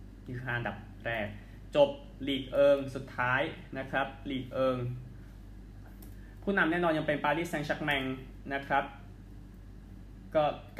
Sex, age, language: male, 20-39, Thai